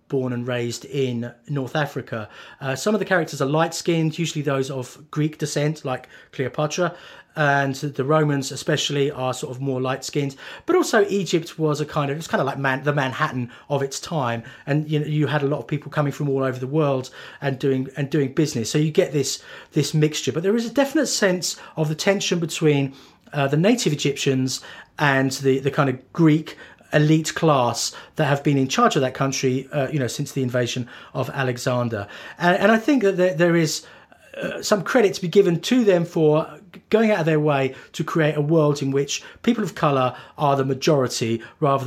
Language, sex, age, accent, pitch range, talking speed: English, male, 30-49, British, 130-160 Hz, 210 wpm